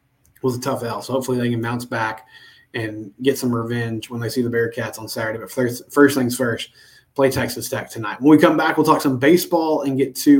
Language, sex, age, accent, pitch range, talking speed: English, male, 20-39, American, 120-145 Hz, 235 wpm